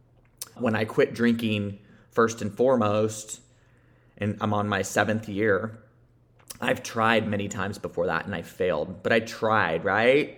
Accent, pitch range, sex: American, 100-120 Hz, male